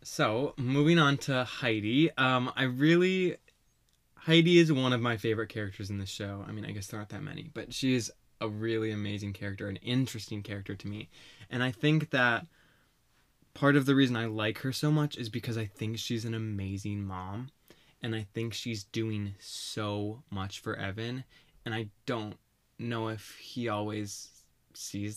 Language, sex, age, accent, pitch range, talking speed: English, male, 20-39, American, 105-135 Hz, 180 wpm